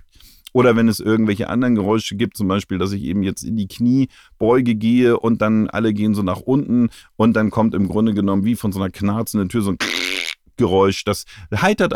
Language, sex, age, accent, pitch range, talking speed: German, male, 40-59, German, 95-115 Hz, 210 wpm